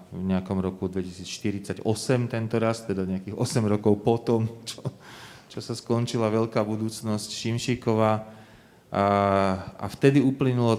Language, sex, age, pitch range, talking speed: Slovak, male, 30-49, 95-115 Hz, 120 wpm